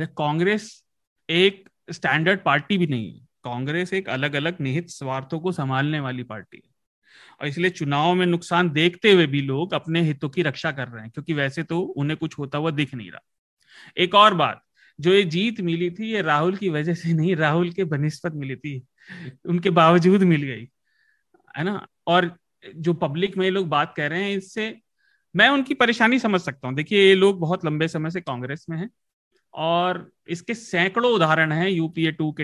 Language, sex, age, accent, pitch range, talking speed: Hindi, male, 30-49, native, 150-195 Hz, 190 wpm